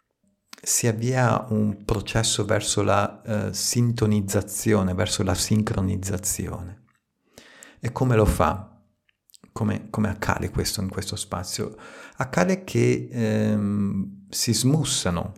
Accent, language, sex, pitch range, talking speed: native, Italian, male, 90-110 Hz, 105 wpm